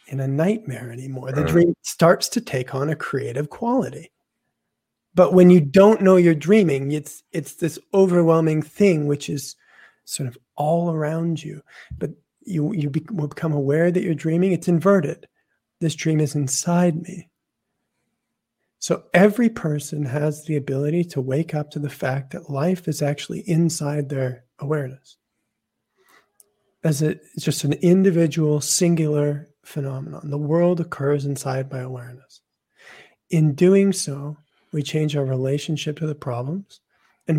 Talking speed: 145 wpm